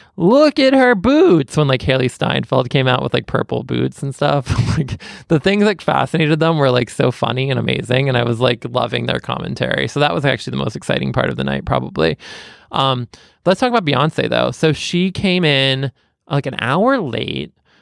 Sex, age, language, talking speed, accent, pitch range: male, 20-39, English, 205 wpm, American, 120-160 Hz